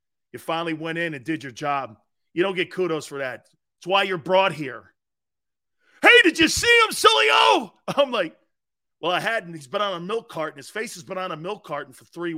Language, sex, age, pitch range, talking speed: English, male, 40-59, 150-240 Hz, 230 wpm